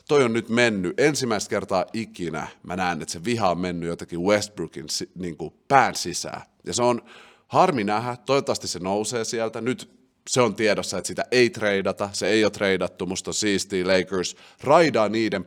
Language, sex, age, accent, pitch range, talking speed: Finnish, male, 30-49, native, 90-110 Hz, 180 wpm